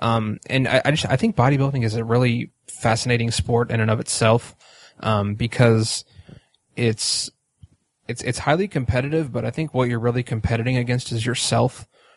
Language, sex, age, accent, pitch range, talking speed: English, male, 20-39, American, 115-125 Hz, 170 wpm